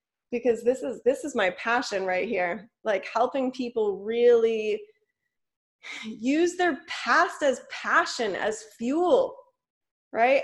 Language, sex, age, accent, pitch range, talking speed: English, female, 20-39, American, 240-345 Hz, 120 wpm